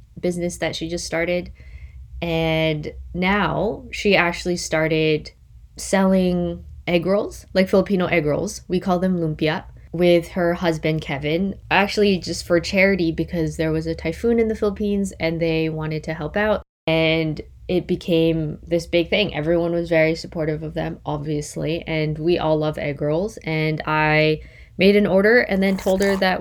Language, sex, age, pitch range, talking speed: English, female, 20-39, 155-180 Hz, 165 wpm